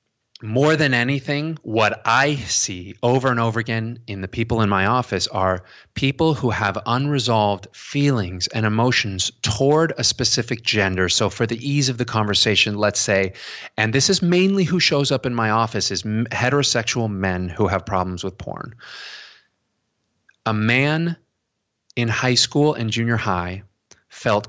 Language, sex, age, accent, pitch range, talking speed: English, male, 30-49, American, 100-135 Hz, 155 wpm